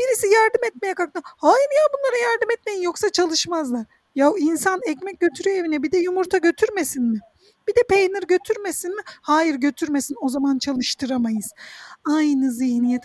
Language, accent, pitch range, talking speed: Turkish, native, 260-370 Hz, 150 wpm